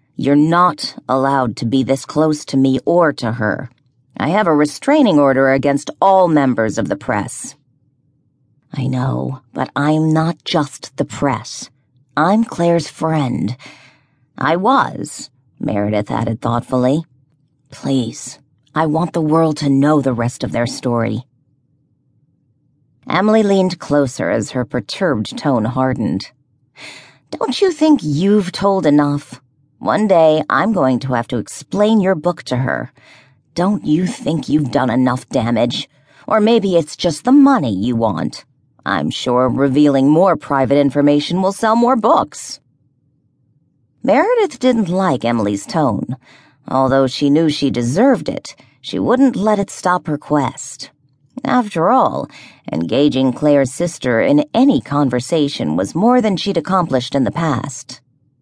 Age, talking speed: 40-59, 140 wpm